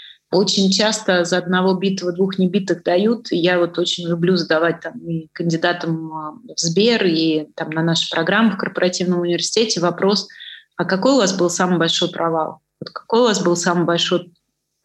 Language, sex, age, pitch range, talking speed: Russian, female, 30-49, 175-195 Hz, 165 wpm